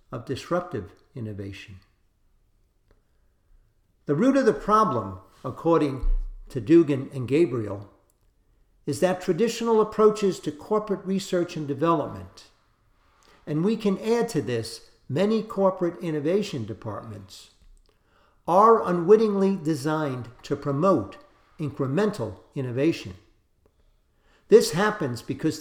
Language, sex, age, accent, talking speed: English, male, 60-79, American, 100 wpm